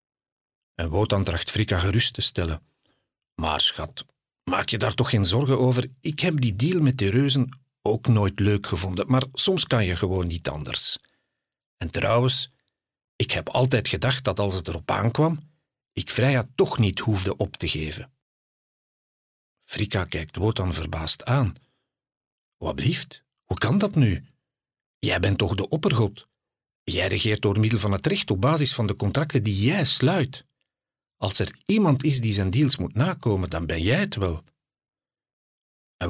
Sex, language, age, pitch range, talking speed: male, Dutch, 50-69, 100-135 Hz, 165 wpm